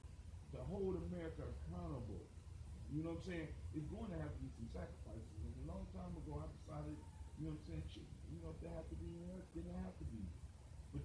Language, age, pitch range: English, 40-59, 80-105 Hz